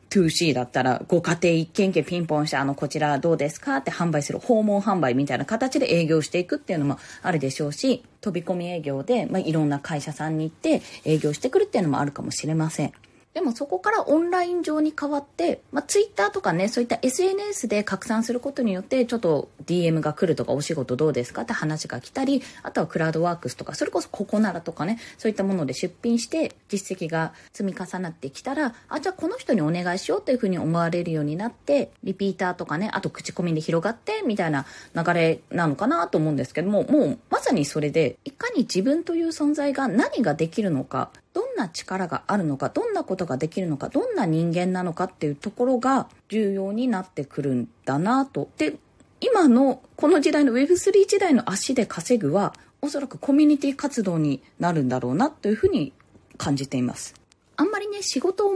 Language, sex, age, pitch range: Japanese, female, 20-39, 155-260 Hz